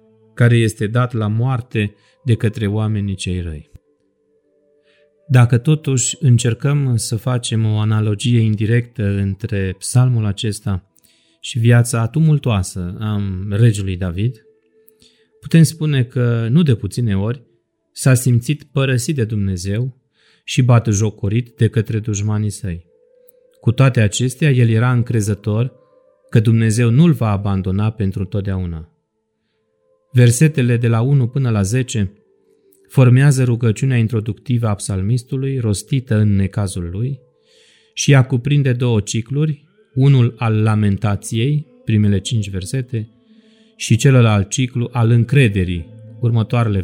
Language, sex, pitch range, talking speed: Romanian, male, 105-130 Hz, 120 wpm